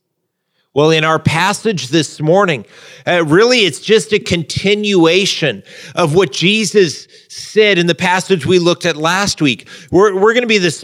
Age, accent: 50-69, American